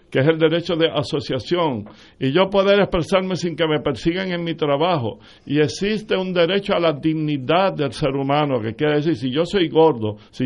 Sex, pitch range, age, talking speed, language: male, 145-180 Hz, 60-79, 200 wpm, Spanish